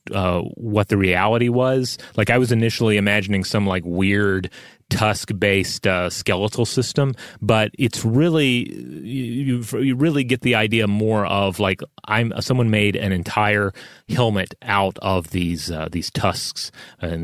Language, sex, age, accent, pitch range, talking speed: English, male, 30-49, American, 95-120 Hz, 150 wpm